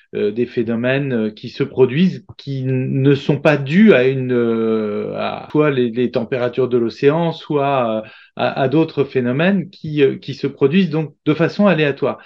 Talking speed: 160 wpm